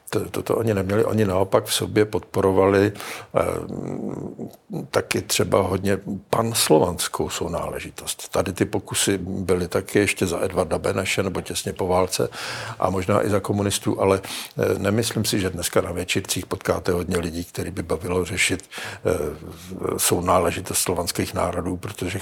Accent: native